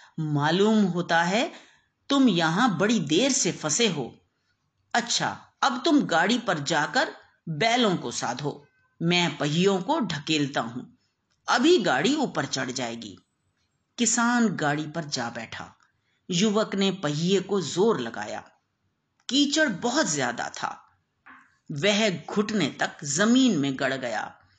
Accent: native